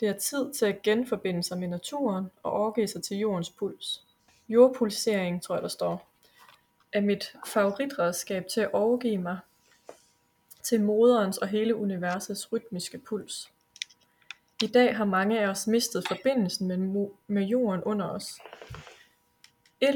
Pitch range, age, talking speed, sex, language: 190-220 Hz, 20-39, 140 wpm, female, Danish